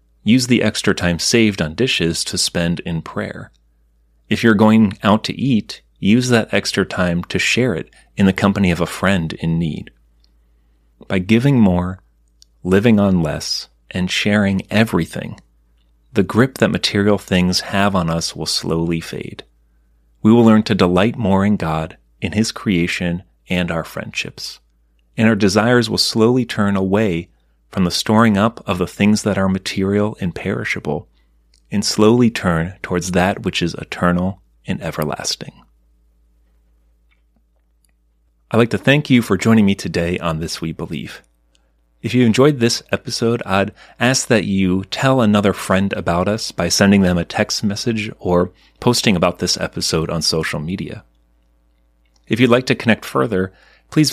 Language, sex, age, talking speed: English, male, 30-49, 160 wpm